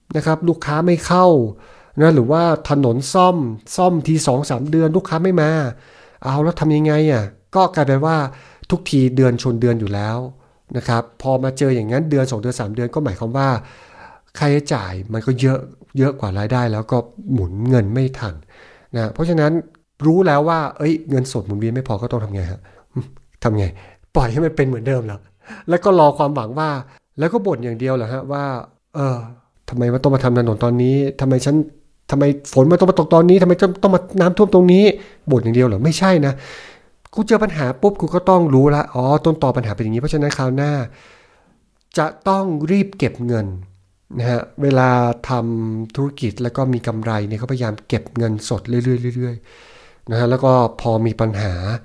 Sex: male